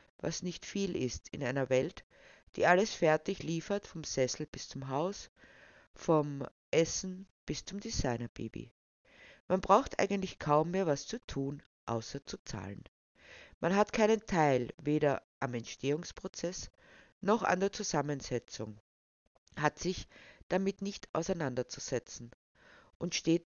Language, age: German, 50-69